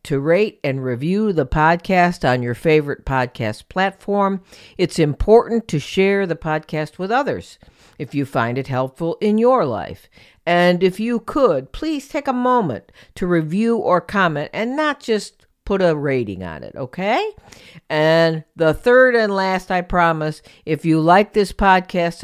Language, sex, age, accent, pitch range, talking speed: English, female, 50-69, American, 150-210 Hz, 160 wpm